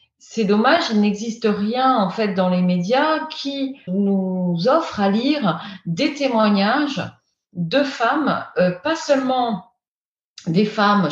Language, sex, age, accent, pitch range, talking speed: French, female, 40-59, French, 185-255 Hz, 130 wpm